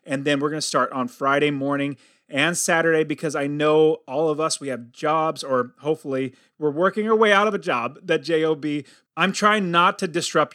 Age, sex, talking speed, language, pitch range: 30-49, male, 205 wpm, English, 140-185 Hz